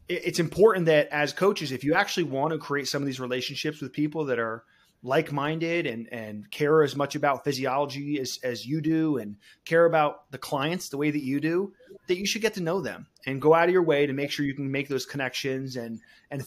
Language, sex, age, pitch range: English, male, 30-49, 130-155 Hz